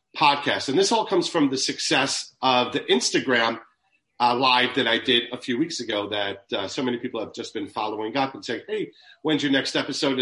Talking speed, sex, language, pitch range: 215 wpm, male, English, 115-155 Hz